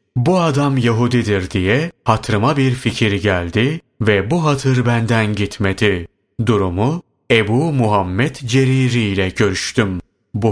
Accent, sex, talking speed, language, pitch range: native, male, 115 wpm, Turkish, 105-135 Hz